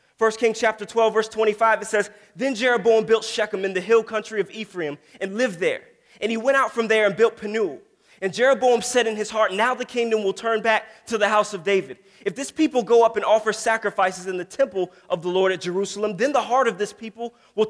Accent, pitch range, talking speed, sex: American, 185-230 Hz, 235 wpm, male